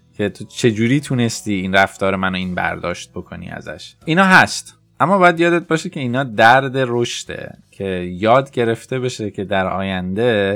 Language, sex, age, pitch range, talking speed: Persian, male, 20-39, 100-130 Hz, 160 wpm